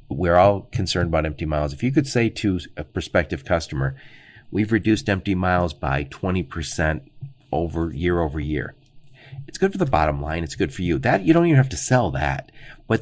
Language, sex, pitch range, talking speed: English, male, 80-120 Hz, 200 wpm